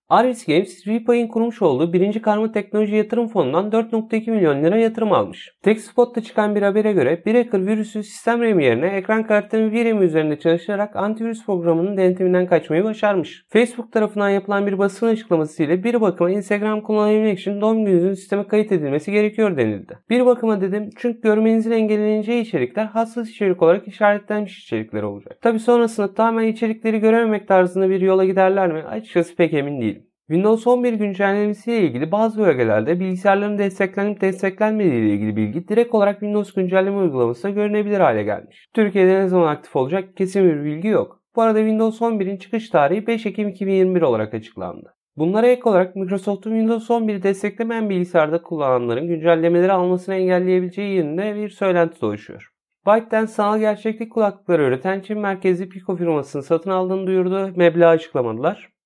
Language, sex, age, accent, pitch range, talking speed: Turkish, male, 30-49, native, 180-220 Hz, 155 wpm